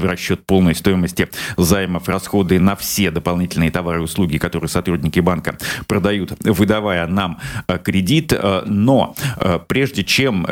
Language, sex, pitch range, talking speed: Russian, male, 90-105 Hz, 125 wpm